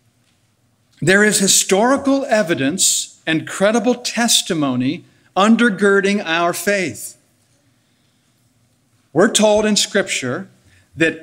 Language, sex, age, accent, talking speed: English, male, 60-79, American, 80 wpm